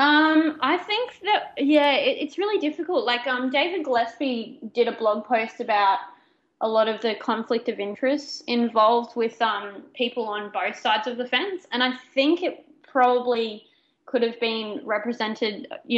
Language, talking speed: English, 165 wpm